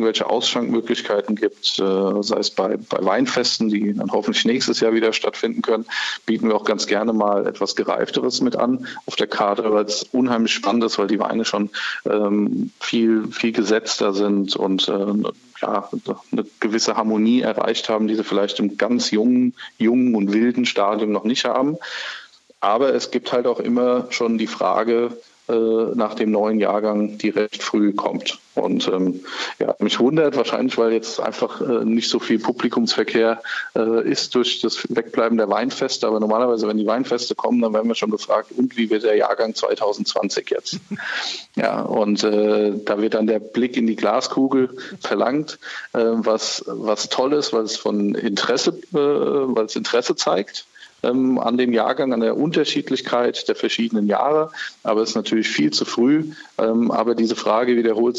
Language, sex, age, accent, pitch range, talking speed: German, male, 40-59, German, 105-120 Hz, 170 wpm